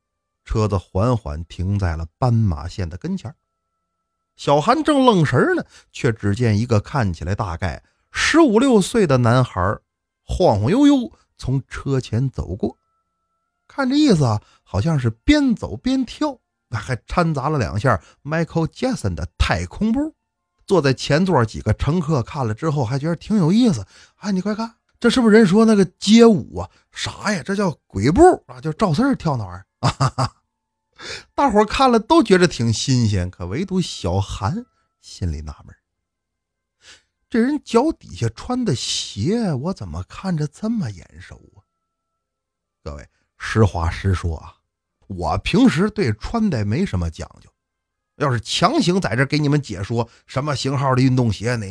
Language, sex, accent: Chinese, male, native